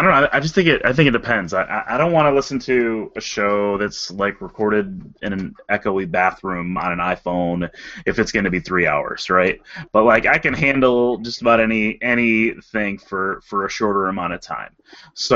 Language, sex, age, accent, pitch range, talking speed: English, male, 30-49, American, 100-130 Hz, 210 wpm